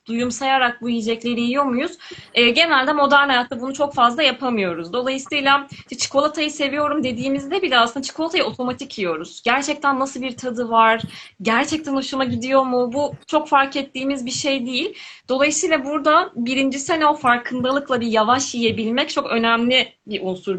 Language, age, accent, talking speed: Turkish, 30-49, native, 155 wpm